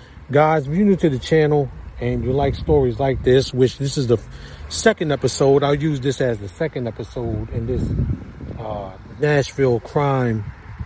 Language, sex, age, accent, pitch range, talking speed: English, male, 40-59, American, 115-145 Hz, 170 wpm